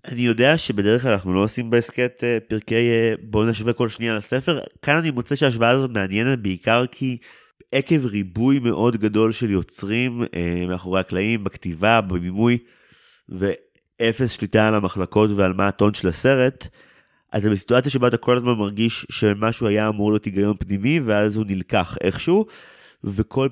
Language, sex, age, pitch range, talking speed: Hebrew, male, 30-49, 100-120 Hz, 150 wpm